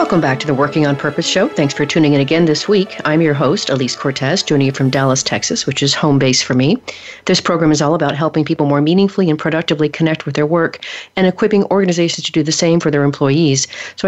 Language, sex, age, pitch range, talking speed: English, female, 40-59, 145-165 Hz, 245 wpm